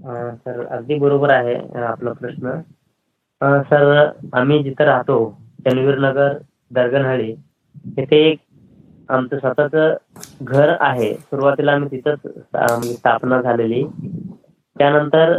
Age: 20-39